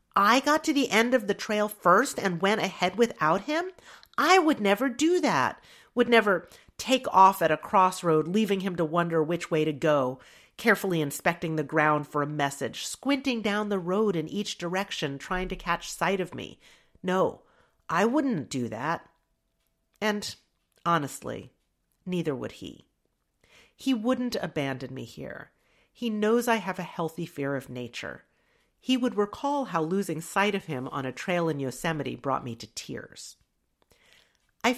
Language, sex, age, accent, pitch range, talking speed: English, female, 40-59, American, 155-230 Hz, 165 wpm